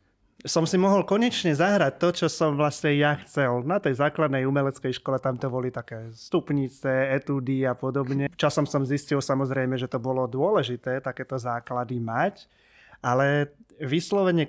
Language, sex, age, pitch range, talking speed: Slovak, male, 20-39, 125-145 Hz, 155 wpm